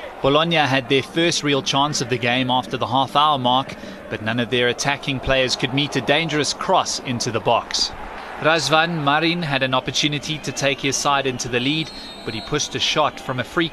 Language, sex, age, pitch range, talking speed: English, male, 30-49, 125-155 Hz, 205 wpm